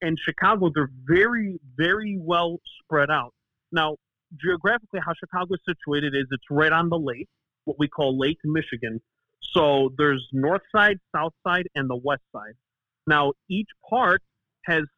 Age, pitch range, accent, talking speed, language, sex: 30-49, 145-185 Hz, American, 155 wpm, English, male